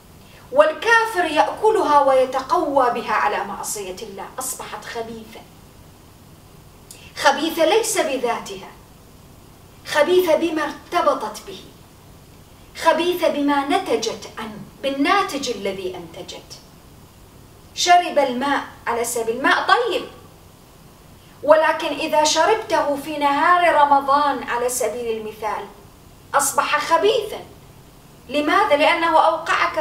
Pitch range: 270-335 Hz